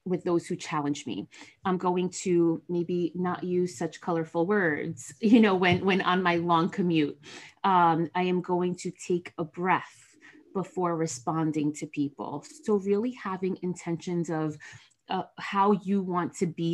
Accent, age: American, 30-49